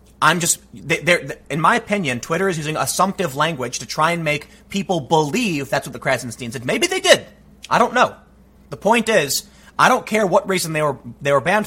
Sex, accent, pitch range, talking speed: male, American, 140-195 Hz, 215 wpm